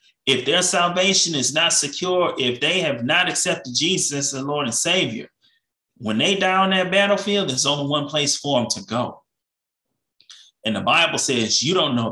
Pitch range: 125-160 Hz